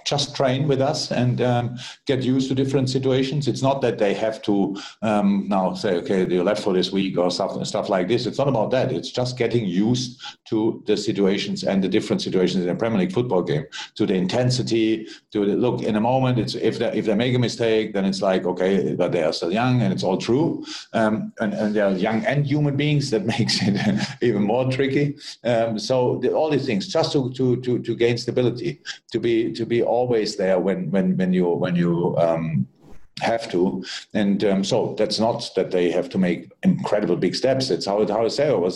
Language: English